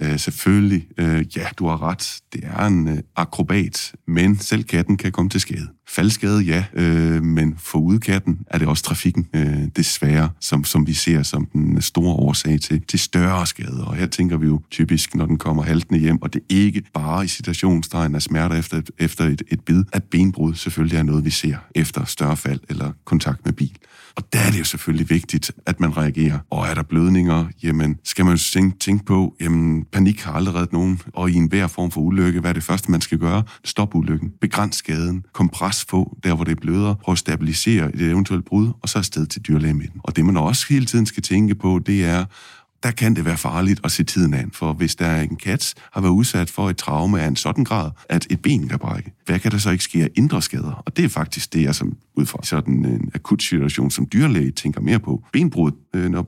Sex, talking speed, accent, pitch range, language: male, 230 wpm, native, 80-95 Hz, Danish